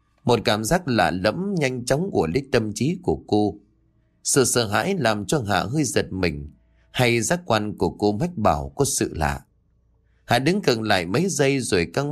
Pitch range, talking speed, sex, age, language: 90-145 Hz, 200 wpm, male, 30-49, Vietnamese